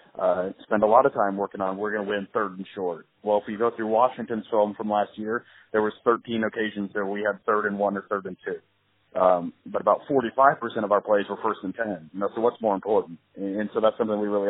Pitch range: 100-110 Hz